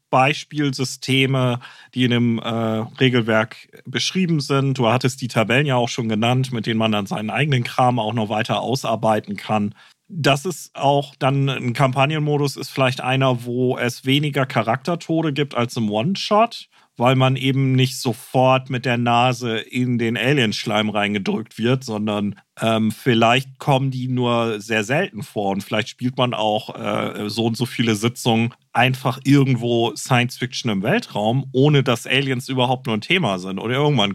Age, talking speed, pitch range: 40-59, 165 wpm, 115-145 Hz